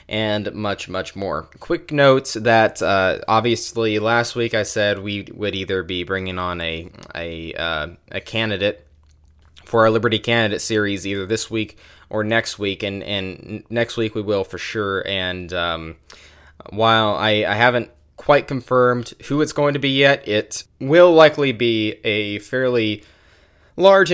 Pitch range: 95-115 Hz